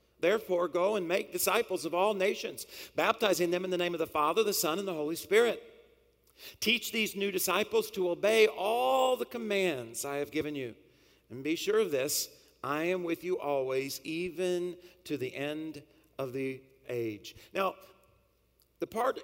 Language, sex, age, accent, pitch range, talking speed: English, male, 50-69, American, 175-215 Hz, 170 wpm